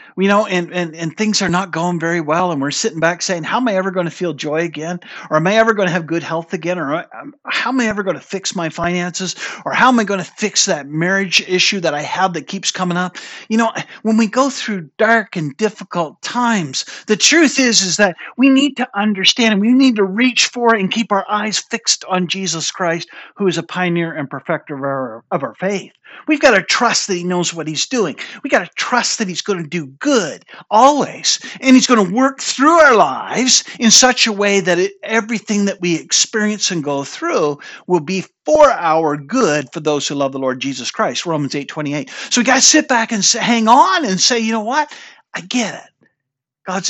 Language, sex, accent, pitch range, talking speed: English, male, American, 175-245 Hz, 235 wpm